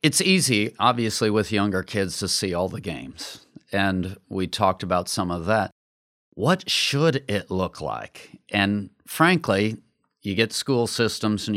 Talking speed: 155 wpm